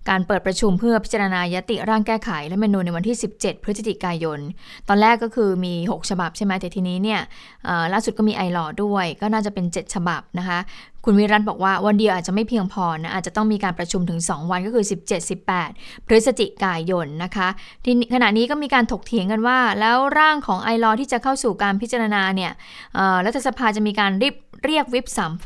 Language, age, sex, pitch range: Thai, 20-39, female, 185-230 Hz